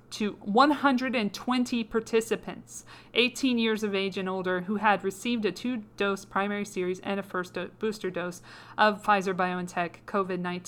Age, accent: 40-59, American